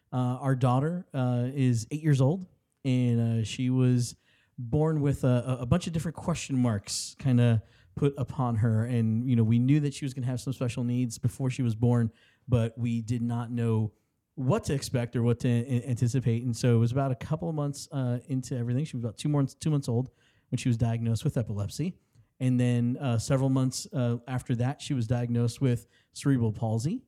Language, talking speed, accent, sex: English, 210 wpm, American, male